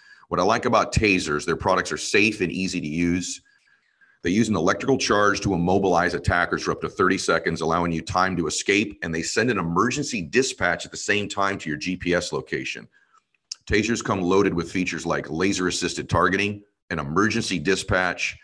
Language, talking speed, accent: English, 185 wpm, American